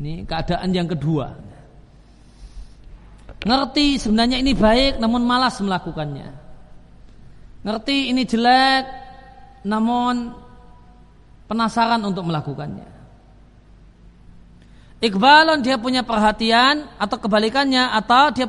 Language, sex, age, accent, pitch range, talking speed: Indonesian, male, 40-59, native, 180-245 Hz, 85 wpm